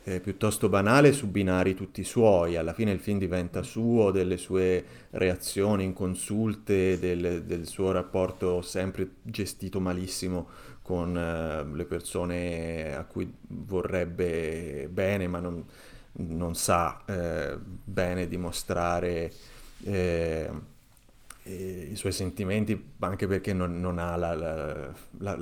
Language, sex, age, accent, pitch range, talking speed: Italian, male, 30-49, native, 90-100 Hz, 120 wpm